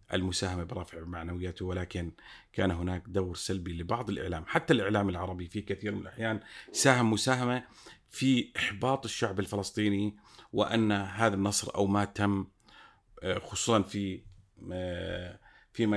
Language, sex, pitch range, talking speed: Arabic, male, 90-105 Hz, 120 wpm